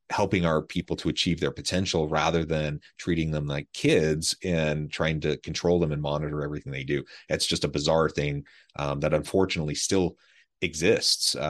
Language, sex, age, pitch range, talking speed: English, male, 30-49, 75-85 Hz, 170 wpm